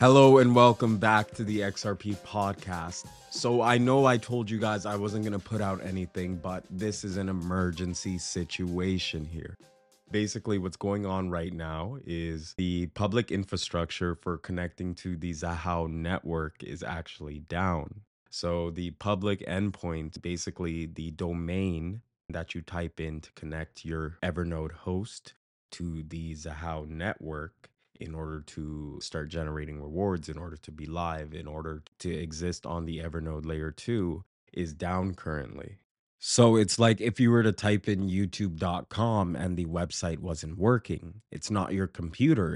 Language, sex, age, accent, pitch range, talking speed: English, male, 20-39, American, 80-100 Hz, 155 wpm